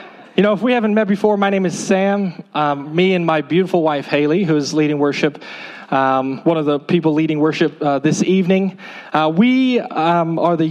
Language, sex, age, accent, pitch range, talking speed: English, male, 20-39, American, 145-185 Hz, 205 wpm